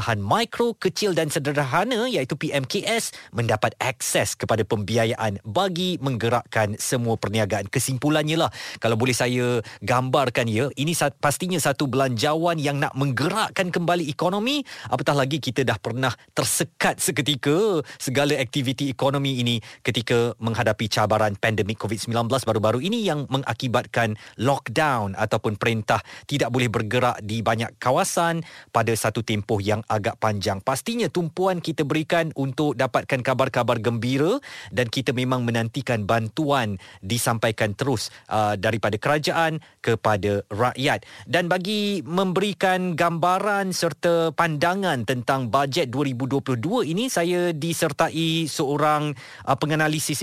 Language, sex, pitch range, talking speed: Malay, male, 115-160 Hz, 120 wpm